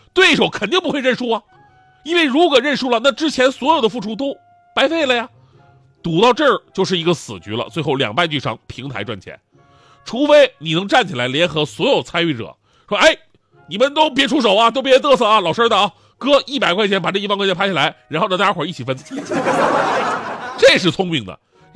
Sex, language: male, Chinese